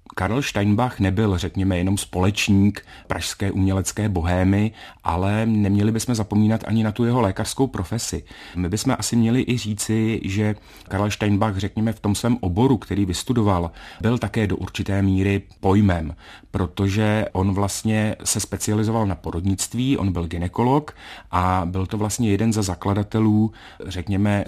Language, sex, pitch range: Czech, male, 95-105 Hz